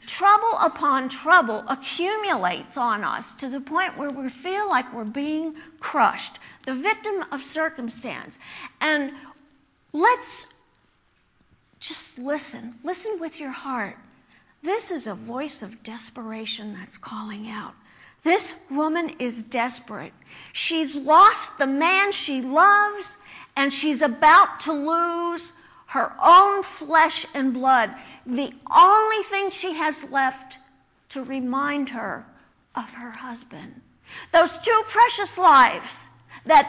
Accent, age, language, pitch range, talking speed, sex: American, 50-69, English, 250-350 Hz, 120 wpm, female